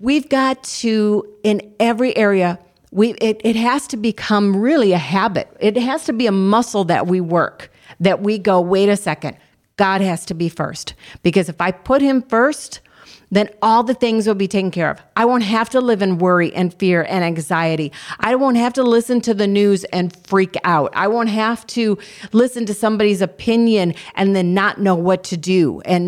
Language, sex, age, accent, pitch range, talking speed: English, female, 50-69, American, 185-230 Hz, 200 wpm